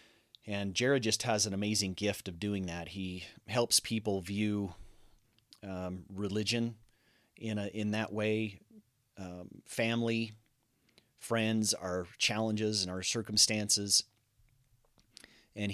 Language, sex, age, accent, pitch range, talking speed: English, male, 30-49, American, 95-110 Hz, 115 wpm